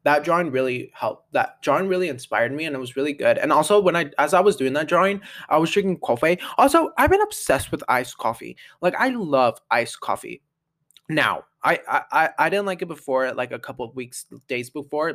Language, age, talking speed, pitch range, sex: English, 20-39, 220 wpm, 135-185 Hz, male